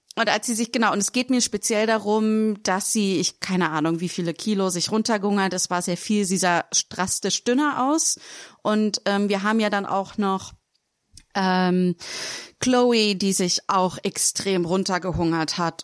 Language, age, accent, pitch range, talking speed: German, 30-49, German, 175-210 Hz, 175 wpm